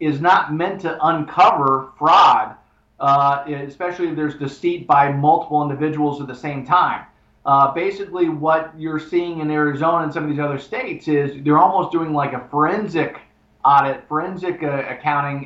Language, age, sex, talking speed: English, 40-59, male, 165 wpm